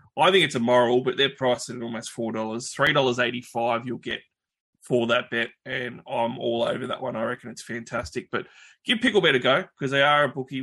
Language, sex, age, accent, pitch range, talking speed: English, male, 20-39, Australian, 120-135 Hz, 205 wpm